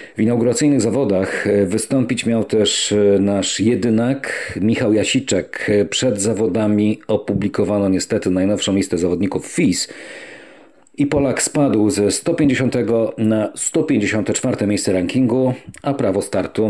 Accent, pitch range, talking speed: native, 100-125 Hz, 110 wpm